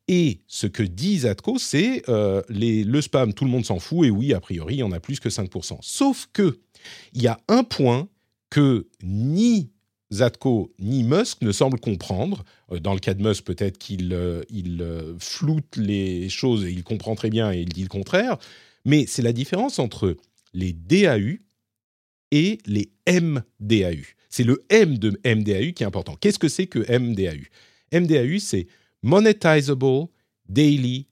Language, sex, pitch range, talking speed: French, male, 100-140 Hz, 175 wpm